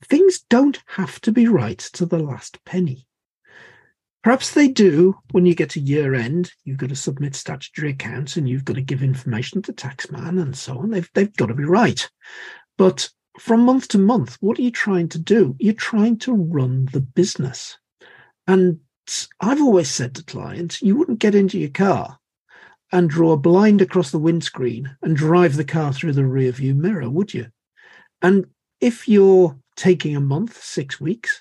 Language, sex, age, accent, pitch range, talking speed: English, male, 50-69, British, 140-200 Hz, 185 wpm